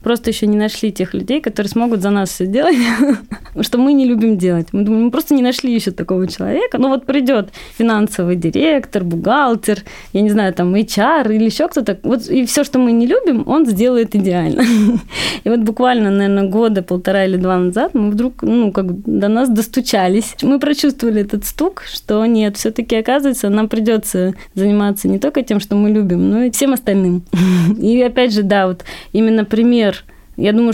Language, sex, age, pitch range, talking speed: Russian, female, 20-39, 195-245 Hz, 185 wpm